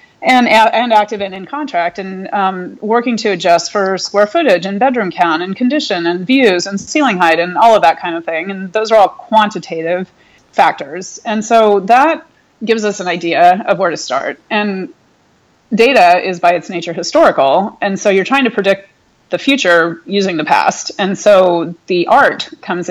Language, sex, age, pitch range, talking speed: English, female, 30-49, 170-225 Hz, 185 wpm